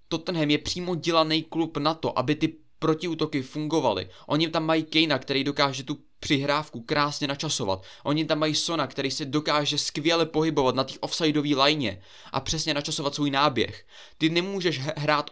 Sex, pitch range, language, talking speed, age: male, 130-155 Hz, Czech, 165 wpm, 20-39